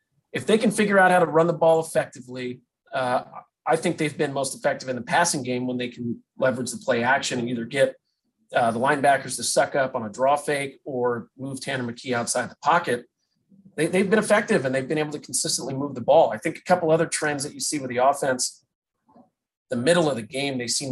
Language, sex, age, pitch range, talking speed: English, male, 30-49, 125-160 Hz, 230 wpm